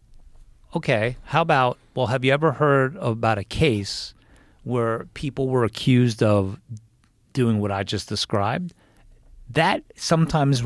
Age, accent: 40-59, American